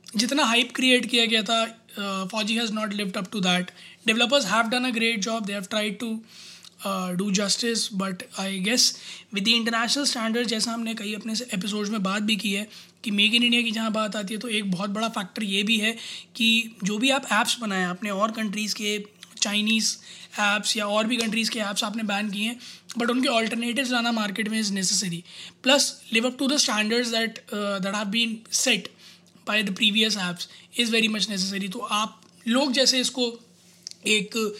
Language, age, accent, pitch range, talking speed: Hindi, 20-39, native, 205-235 Hz, 185 wpm